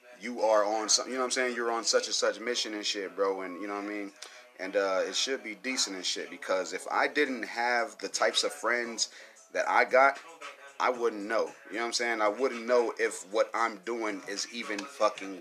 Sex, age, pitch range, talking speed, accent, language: male, 30-49, 110-135 Hz, 240 wpm, American, English